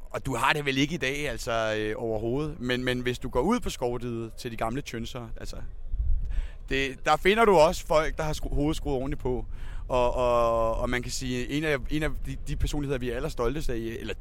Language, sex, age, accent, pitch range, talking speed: Danish, male, 30-49, native, 120-155 Hz, 230 wpm